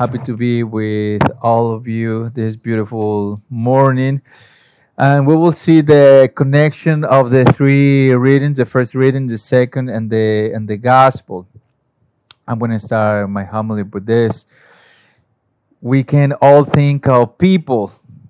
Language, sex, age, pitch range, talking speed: English, male, 40-59, 115-135 Hz, 145 wpm